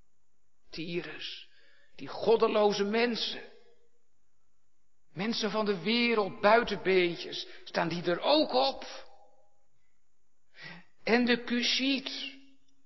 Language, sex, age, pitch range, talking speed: Dutch, male, 60-79, 145-225 Hz, 80 wpm